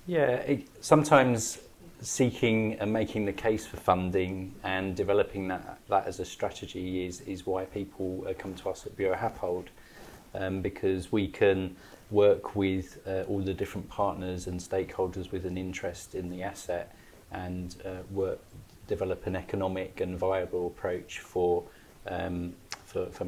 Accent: British